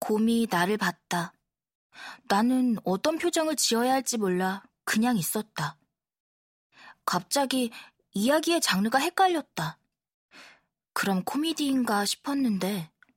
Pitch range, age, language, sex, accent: 185-260 Hz, 20-39, Korean, female, native